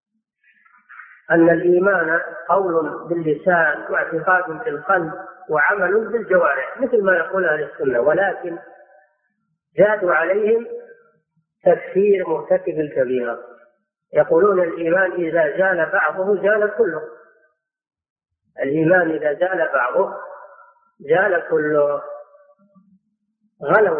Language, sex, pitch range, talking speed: Arabic, female, 160-220 Hz, 85 wpm